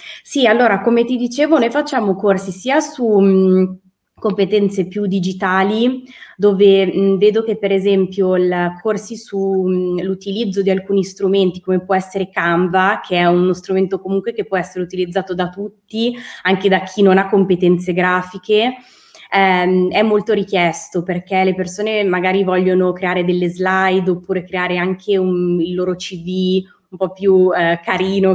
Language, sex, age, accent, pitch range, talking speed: Italian, female, 20-39, native, 180-205 Hz, 145 wpm